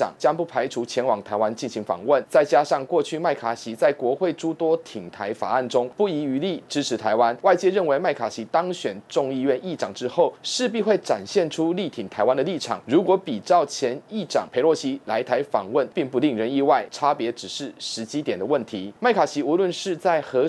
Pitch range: 115-175 Hz